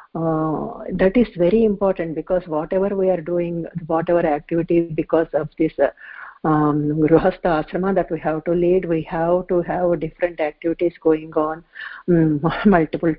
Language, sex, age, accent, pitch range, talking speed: English, female, 50-69, Indian, 155-175 Hz, 155 wpm